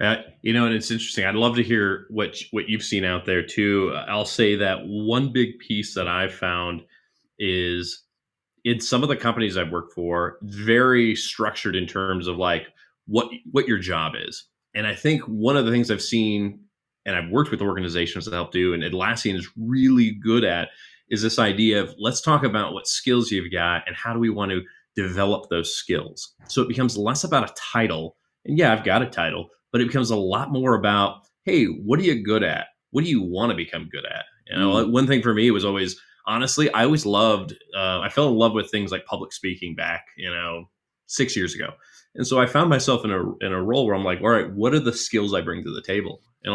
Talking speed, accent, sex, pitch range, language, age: 230 wpm, American, male, 95-115 Hz, English, 30-49